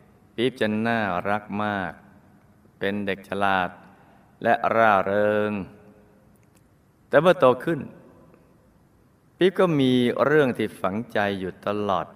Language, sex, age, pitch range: Thai, male, 20-39, 100-120 Hz